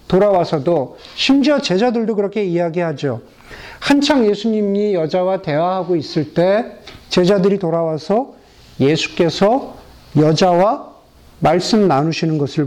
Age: 50-69